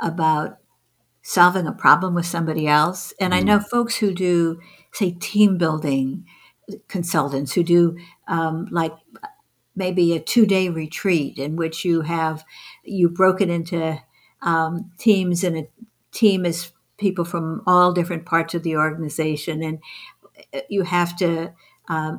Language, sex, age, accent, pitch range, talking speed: English, female, 60-79, American, 155-190 Hz, 140 wpm